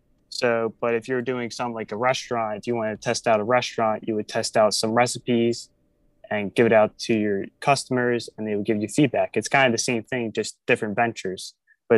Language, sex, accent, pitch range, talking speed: English, male, American, 110-125 Hz, 230 wpm